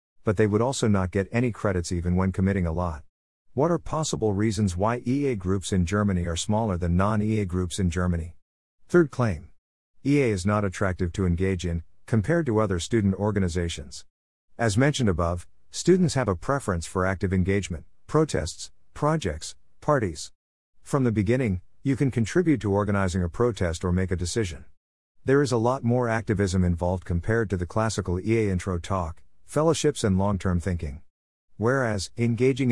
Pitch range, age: 90-115 Hz, 50-69